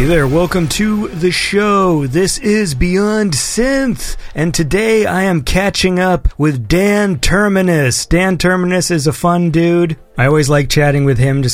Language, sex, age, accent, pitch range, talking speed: English, male, 30-49, American, 135-175 Hz, 165 wpm